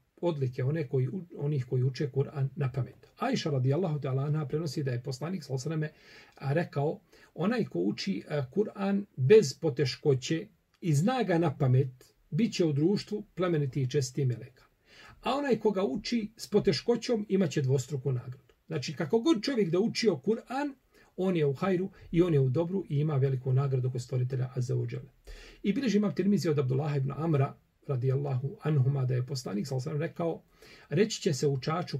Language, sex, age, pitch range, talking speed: English, male, 40-59, 135-180 Hz, 175 wpm